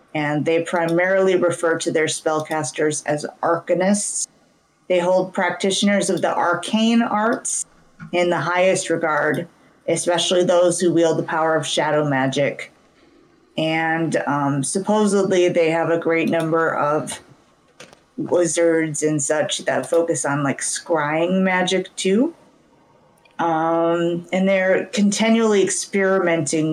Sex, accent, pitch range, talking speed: female, American, 160-195 Hz, 120 wpm